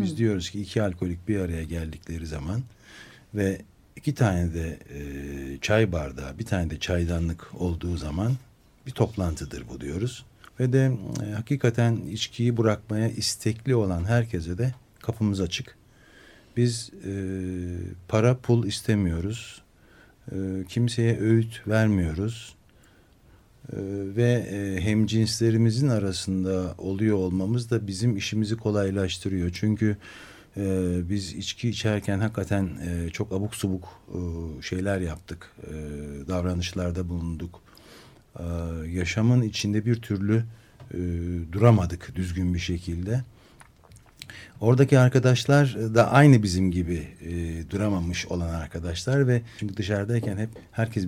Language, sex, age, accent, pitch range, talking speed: Turkish, male, 60-79, native, 90-115 Hz, 100 wpm